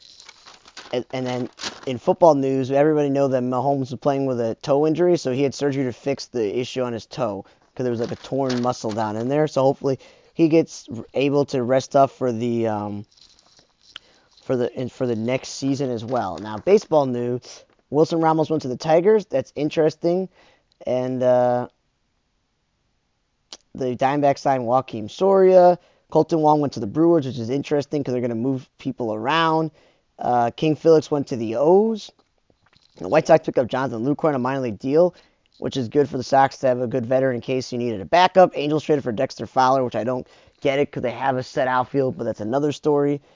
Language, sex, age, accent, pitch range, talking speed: English, male, 10-29, American, 125-150 Hz, 205 wpm